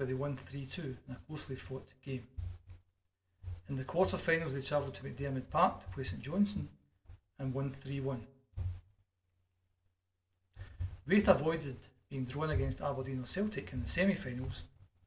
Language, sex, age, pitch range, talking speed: English, male, 40-59, 95-140 Hz, 140 wpm